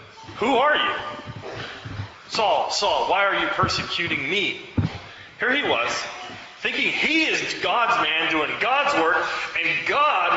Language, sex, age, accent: English, male, 30-49, American